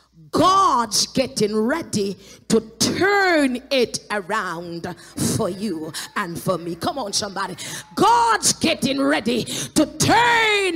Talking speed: 110 wpm